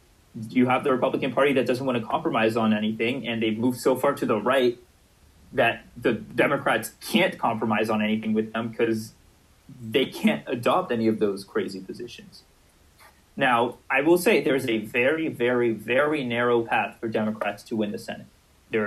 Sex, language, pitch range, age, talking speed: male, German, 105-120 Hz, 30-49, 180 wpm